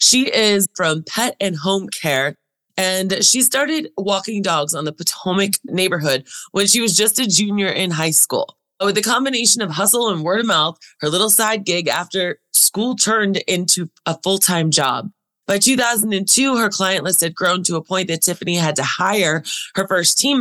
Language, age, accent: English, 20-39, American